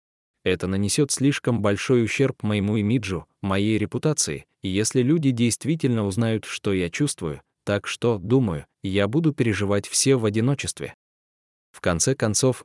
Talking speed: 135 wpm